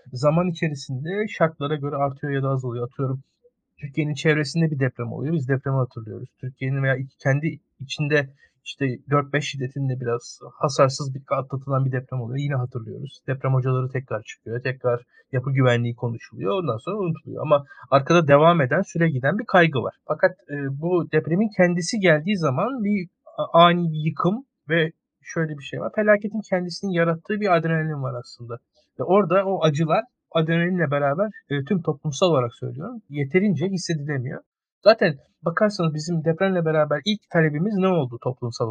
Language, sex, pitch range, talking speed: Turkish, male, 135-175 Hz, 145 wpm